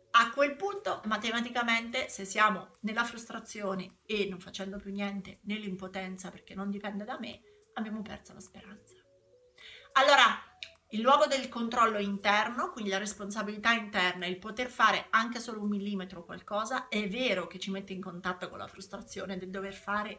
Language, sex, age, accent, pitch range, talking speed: Italian, female, 30-49, native, 190-225 Hz, 160 wpm